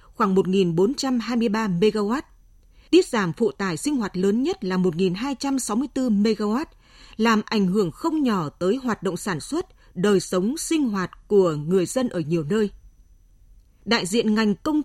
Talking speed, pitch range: 155 wpm, 190-260 Hz